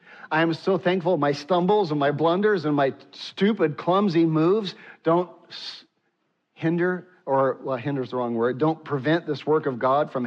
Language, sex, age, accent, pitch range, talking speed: English, male, 50-69, American, 125-160 Hz, 170 wpm